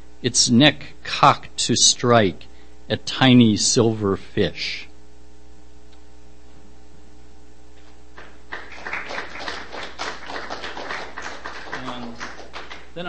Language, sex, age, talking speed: English, male, 50-69, 45 wpm